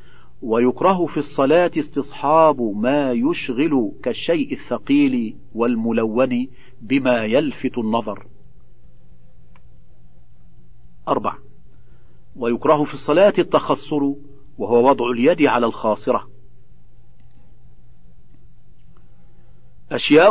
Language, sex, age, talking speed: Arabic, male, 50-69, 70 wpm